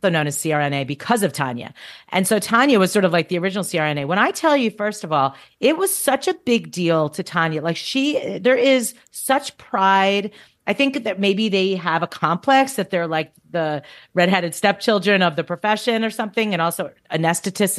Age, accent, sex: 40-59, American, female